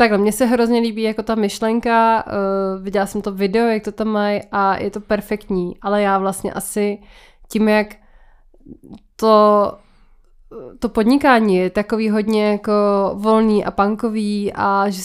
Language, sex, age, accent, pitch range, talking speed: Czech, female, 20-39, native, 195-215 Hz, 155 wpm